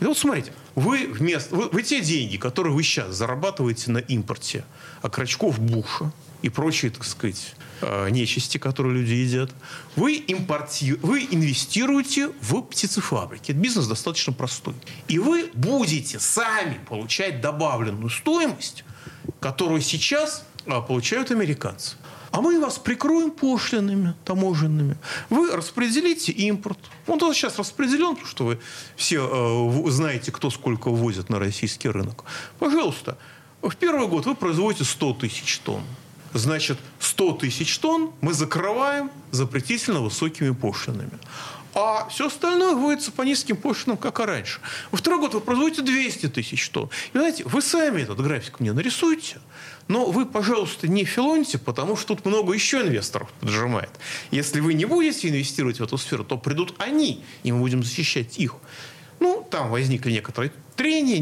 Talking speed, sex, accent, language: 145 wpm, male, native, Russian